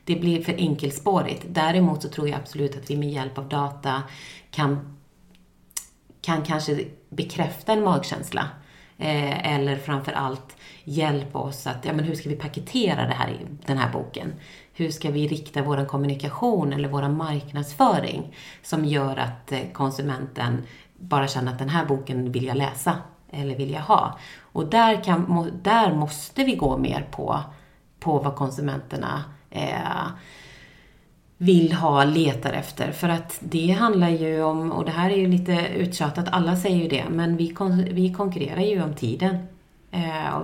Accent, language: native, Swedish